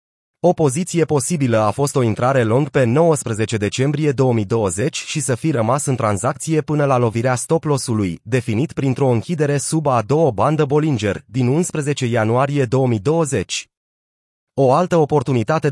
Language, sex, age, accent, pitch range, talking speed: Romanian, male, 30-49, native, 115-150 Hz, 145 wpm